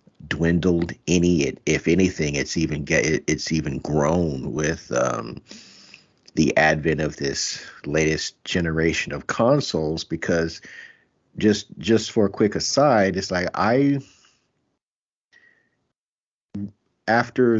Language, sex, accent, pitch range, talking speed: English, male, American, 80-95 Hz, 105 wpm